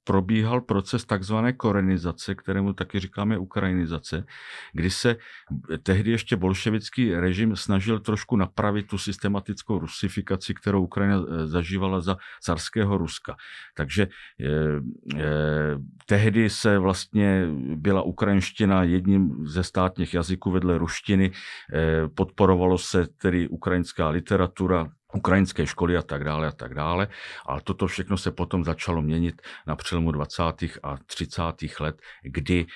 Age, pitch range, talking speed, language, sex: 50-69, 80-95 Hz, 125 wpm, Czech, male